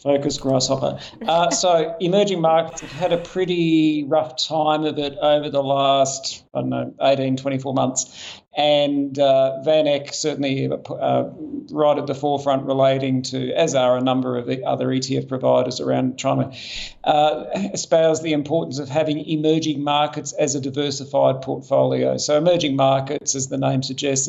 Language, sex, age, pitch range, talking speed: English, male, 50-69, 135-155 Hz, 160 wpm